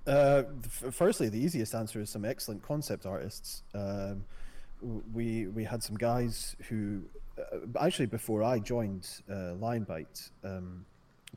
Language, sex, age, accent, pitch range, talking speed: English, male, 30-49, British, 95-115 Hz, 135 wpm